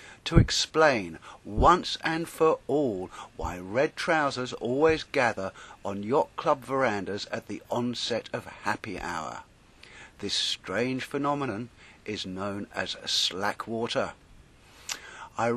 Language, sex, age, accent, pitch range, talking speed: English, male, 50-69, British, 115-150 Hz, 115 wpm